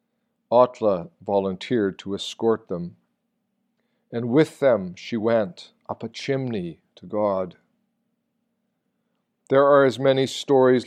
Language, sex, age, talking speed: English, male, 50-69, 110 wpm